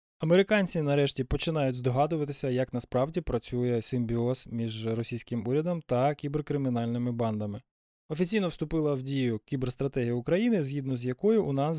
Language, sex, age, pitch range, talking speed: Ukrainian, male, 20-39, 130-165 Hz, 125 wpm